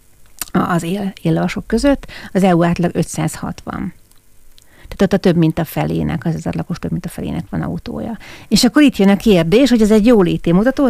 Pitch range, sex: 170-210 Hz, female